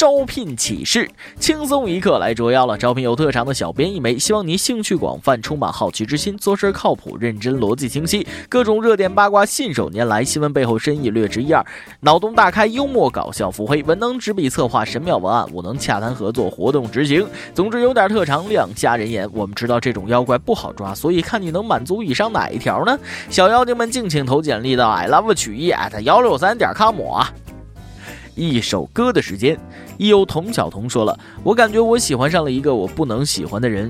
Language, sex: Chinese, male